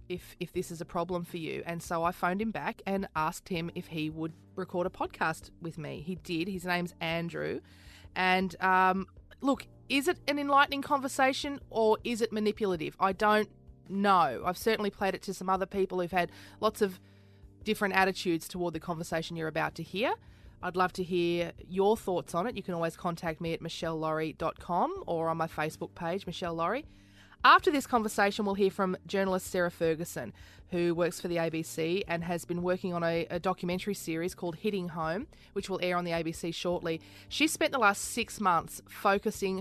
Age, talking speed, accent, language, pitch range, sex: 20-39, 190 wpm, Australian, English, 165-195 Hz, female